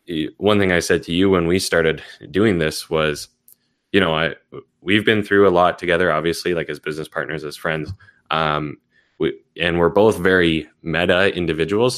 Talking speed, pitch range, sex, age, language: 180 wpm, 80-95 Hz, male, 10-29, English